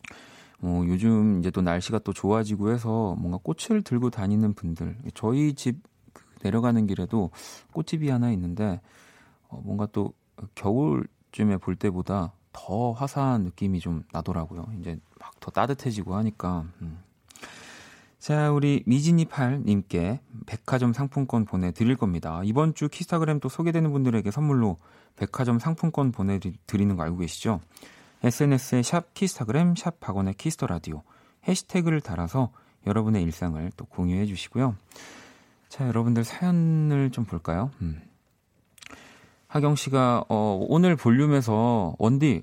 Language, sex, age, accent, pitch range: Korean, male, 30-49, native, 95-135 Hz